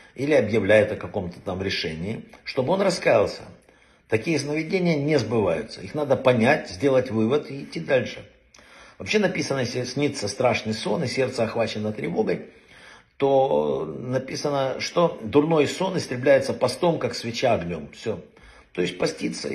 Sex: male